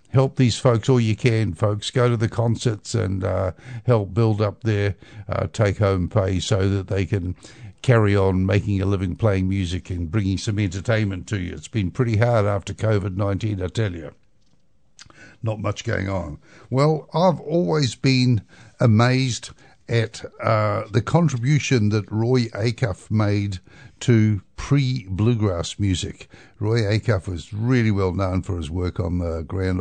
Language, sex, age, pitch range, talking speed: English, male, 60-79, 95-115 Hz, 155 wpm